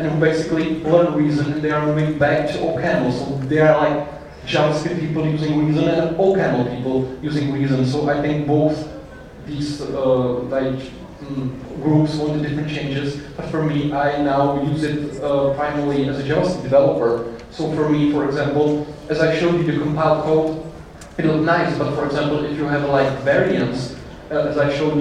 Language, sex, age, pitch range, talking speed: Bulgarian, male, 30-49, 140-155 Hz, 185 wpm